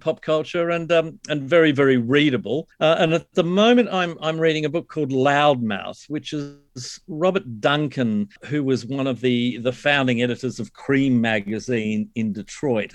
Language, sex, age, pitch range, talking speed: English, male, 50-69, 120-155 Hz, 170 wpm